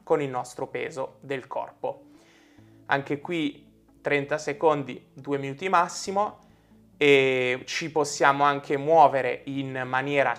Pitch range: 130-155 Hz